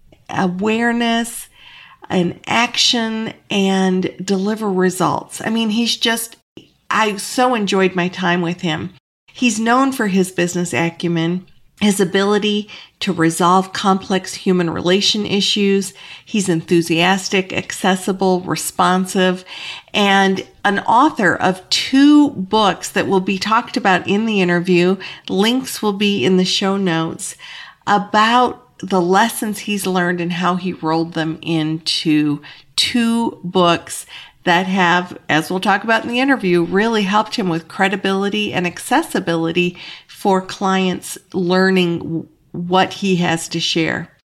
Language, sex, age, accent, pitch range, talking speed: English, female, 50-69, American, 175-220 Hz, 125 wpm